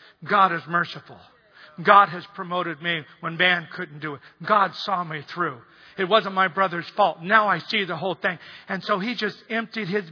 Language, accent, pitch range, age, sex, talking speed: English, American, 180-225 Hz, 50-69, male, 195 wpm